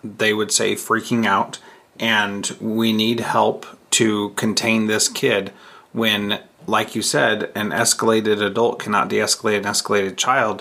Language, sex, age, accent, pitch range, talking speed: English, male, 30-49, American, 110-125 Hz, 140 wpm